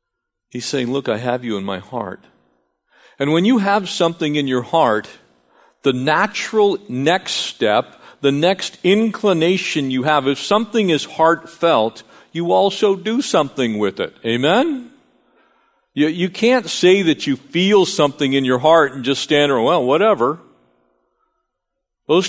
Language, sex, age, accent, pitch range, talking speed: English, male, 50-69, American, 145-225 Hz, 150 wpm